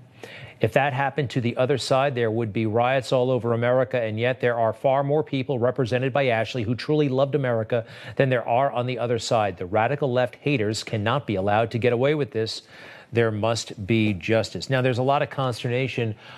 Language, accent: English, American